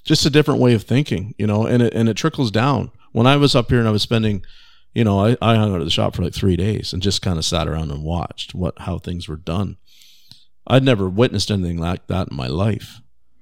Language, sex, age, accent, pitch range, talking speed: English, male, 50-69, American, 95-115 Hz, 260 wpm